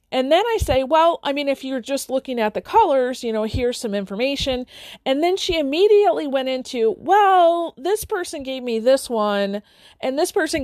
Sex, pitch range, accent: female, 225-315 Hz, American